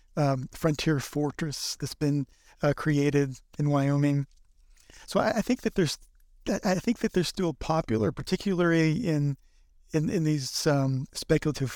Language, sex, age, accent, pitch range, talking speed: English, male, 50-69, American, 140-165 Hz, 145 wpm